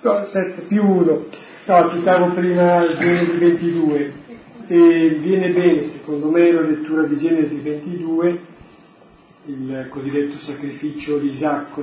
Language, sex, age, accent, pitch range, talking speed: Italian, male, 40-59, native, 145-165 Hz, 120 wpm